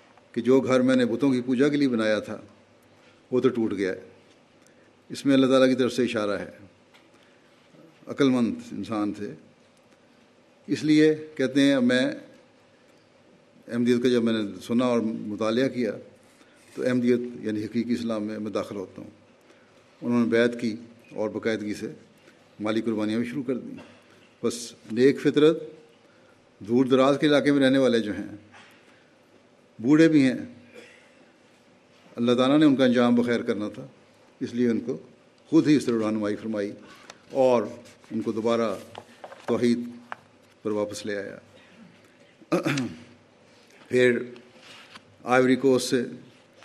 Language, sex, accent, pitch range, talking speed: English, male, Indian, 115-130 Hz, 125 wpm